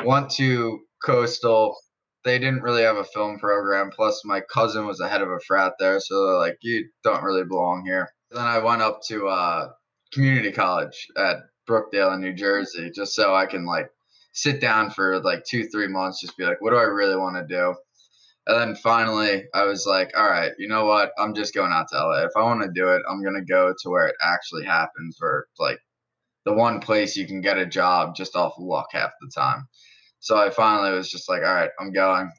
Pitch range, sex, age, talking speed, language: 95-110 Hz, male, 10-29, 220 wpm, English